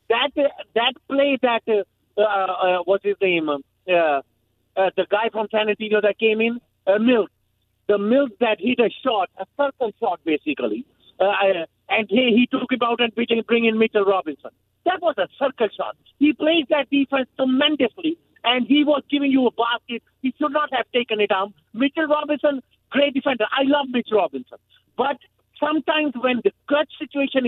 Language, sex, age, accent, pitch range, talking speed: English, male, 50-69, Indian, 230-300 Hz, 190 wpm